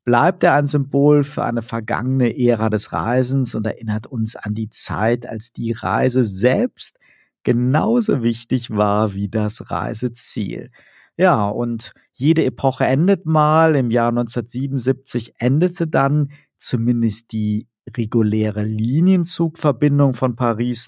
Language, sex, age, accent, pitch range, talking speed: German, male, 50-69, German, 110-130 Hz, 125 wpm